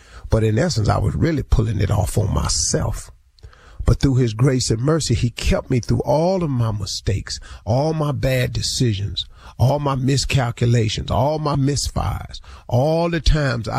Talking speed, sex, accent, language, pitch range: 165 wpm, male, American, English, 100-130 Hz